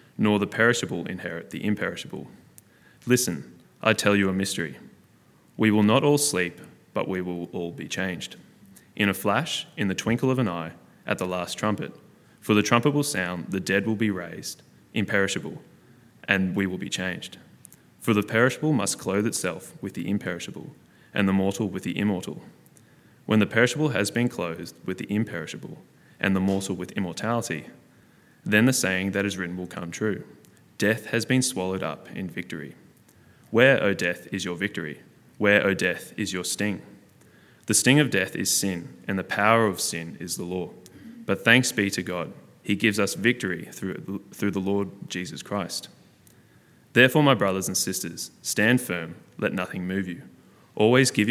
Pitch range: 90-110 Hz